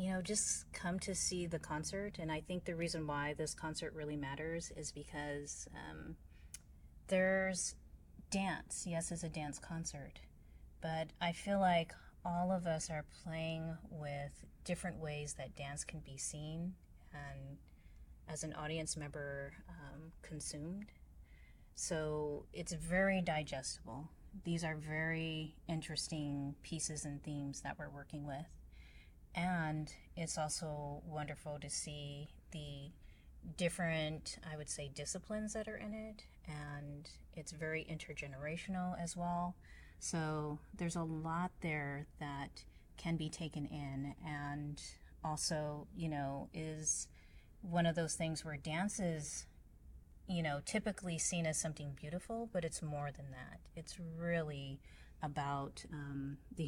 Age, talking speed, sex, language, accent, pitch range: 30-49, 135 wpm, female, English, American, 145-170 Hz